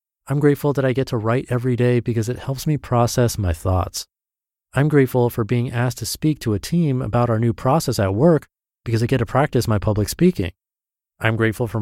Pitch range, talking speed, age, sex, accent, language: 105-130 Hz, 220 wpm, 30-49, male, American, English